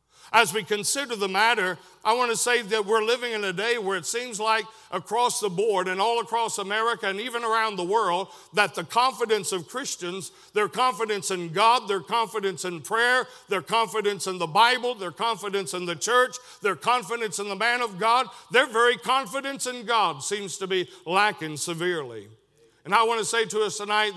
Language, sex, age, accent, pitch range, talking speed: English, male, 60-79, American, 195-230 Hz, 195 wpm